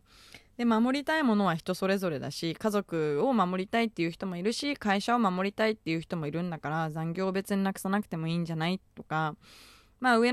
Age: 20-39